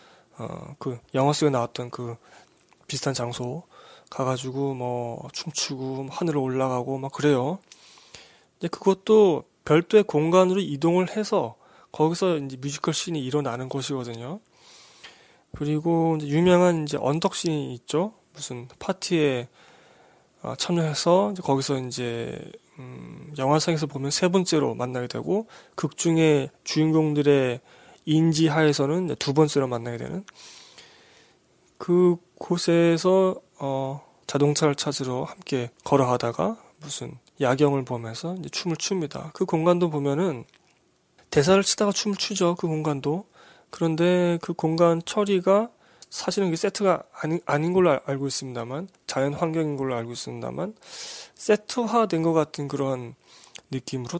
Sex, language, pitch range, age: male, Korean, 135-175 Hz, 20-39